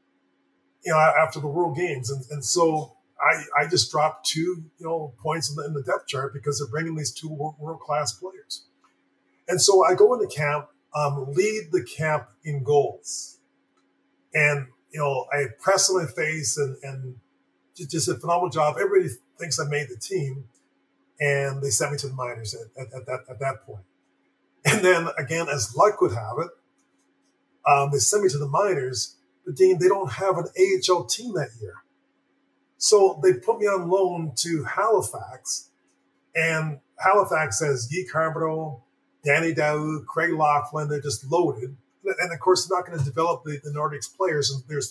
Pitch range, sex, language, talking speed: 135-180 Hz, male, English, 180 wpm